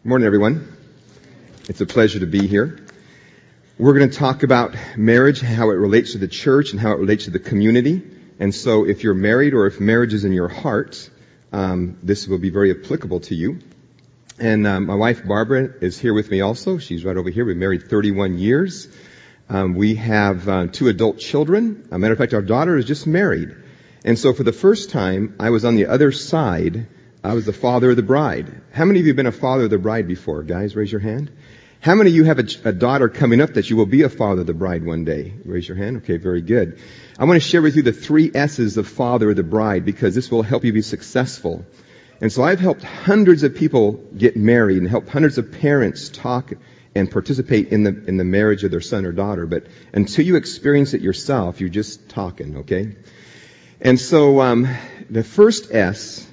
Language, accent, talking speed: English, American, 220 wpm